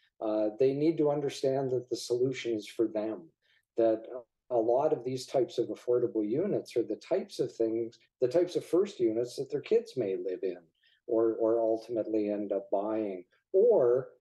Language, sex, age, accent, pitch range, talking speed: English, male, 50-69, American, 115-175 Hz, 180 wpm